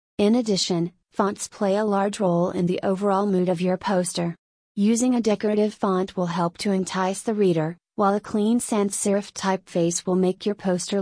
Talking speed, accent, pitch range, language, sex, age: 185 wpm, American, 180-205 Hz, English, female, 30-49